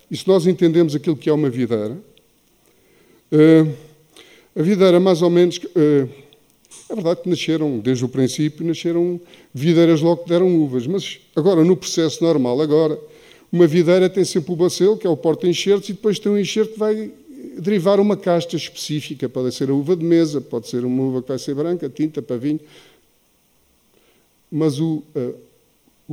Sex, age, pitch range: male, 50-69, 135-175 Hz